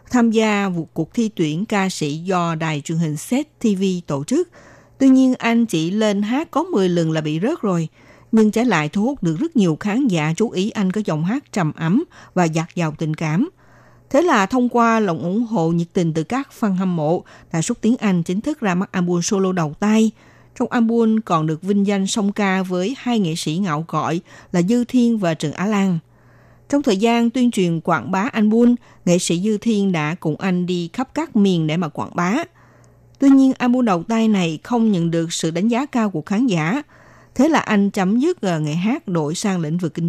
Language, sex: Vietnamese, female